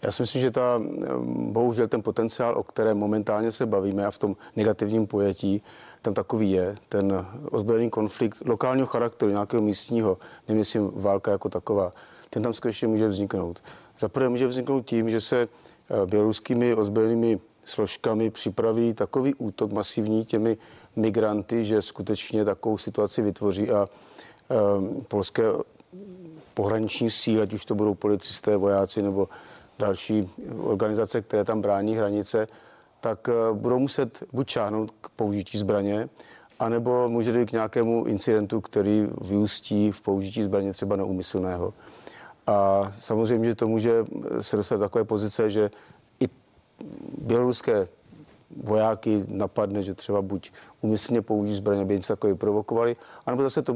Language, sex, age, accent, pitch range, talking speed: Czech, male, 40-59, native, 100-115 Hz, 140 wpm